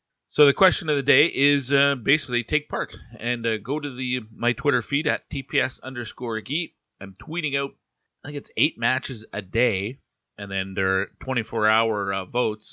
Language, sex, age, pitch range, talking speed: English, male, 40-59, 110-140 Hz, 195 wpm